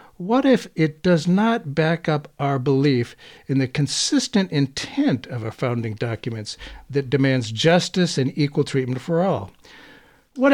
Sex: male